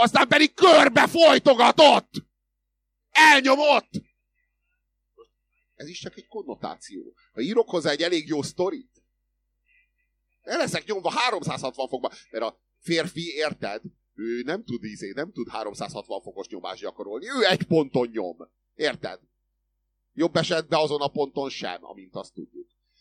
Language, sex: German, male